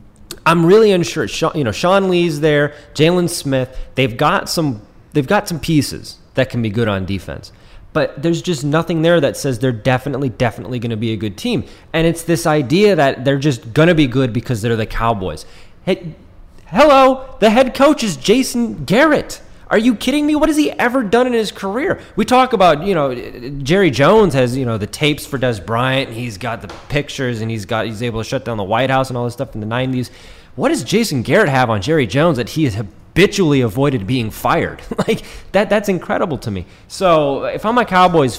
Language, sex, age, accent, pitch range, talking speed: English, male, 20-39, American, 115-170 Hz, 215 wpm